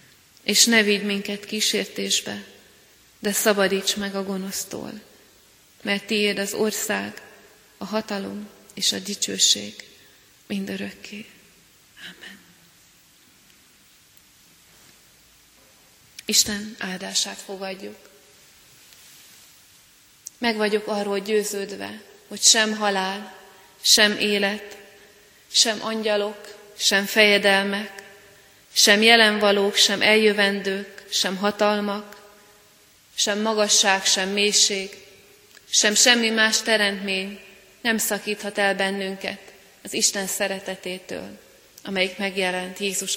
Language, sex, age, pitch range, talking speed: Hungarian, female, 30-49, 195-210 Hz, 85 wpm